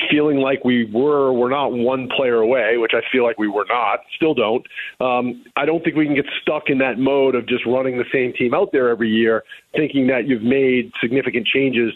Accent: American